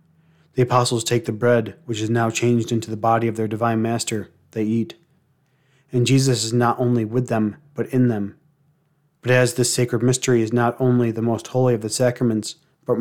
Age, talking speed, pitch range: 30-49, 200 wpm, 115-130 Hz